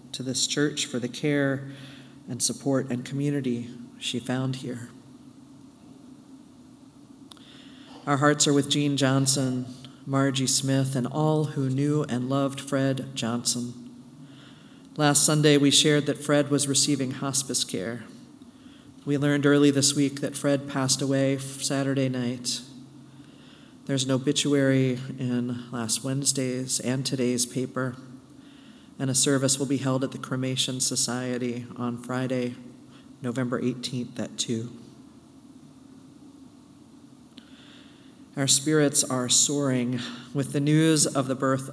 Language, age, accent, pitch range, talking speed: English, 40-59, American, 125-145 Hz, 120 wpm